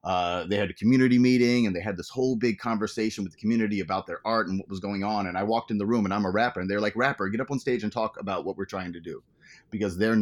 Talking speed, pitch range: 305 wpm, 95-125 Hz